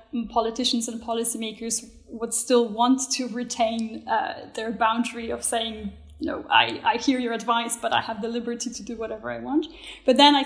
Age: 10-29